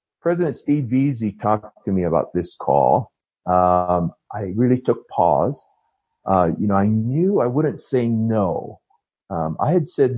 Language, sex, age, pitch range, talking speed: English, male, 50-69, 95-115 Hz, 160 wpm